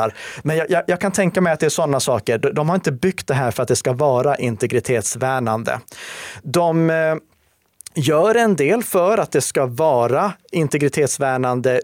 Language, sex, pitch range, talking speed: Swedish, male, 125-160 Hz, 185 wpm